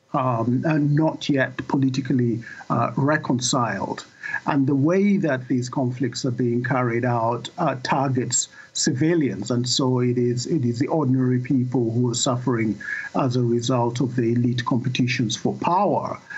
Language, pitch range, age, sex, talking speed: English, 120-140 Hz, 50-69, male, 150 wpm